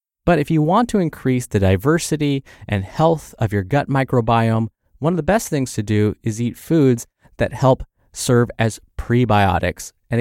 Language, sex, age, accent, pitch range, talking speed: English, male, 20-39, American, 105-145 Hz, 175 wpm